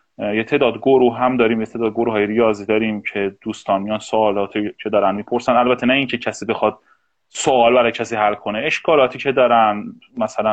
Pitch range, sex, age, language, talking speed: 105-130 Hz, male, 30-49, Persian, 180 wpm